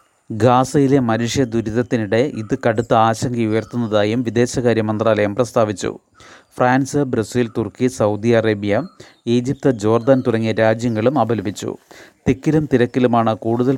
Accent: native